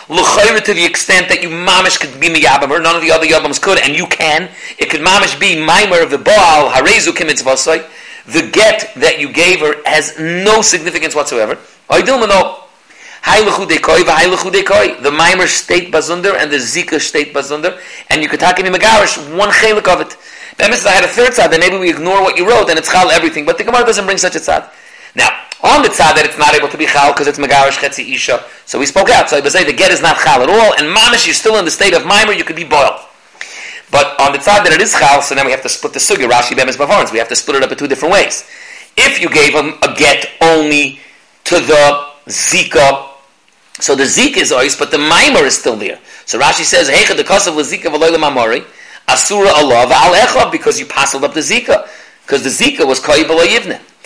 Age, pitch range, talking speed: 40-59, 145-190 Hz, 215 wpm